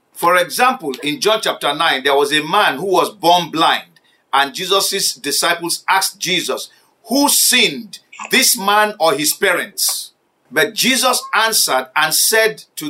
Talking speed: 150 wpm